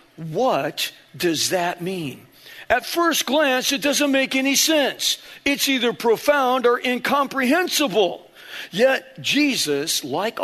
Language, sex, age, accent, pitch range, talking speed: English, male, 50-69, American, 180-265 Hz, 115 wpm